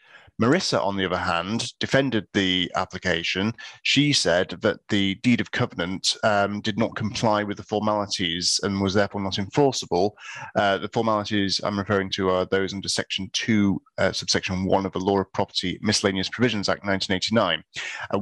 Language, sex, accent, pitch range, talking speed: English, male, British, 95-110 Hz, 165 wpm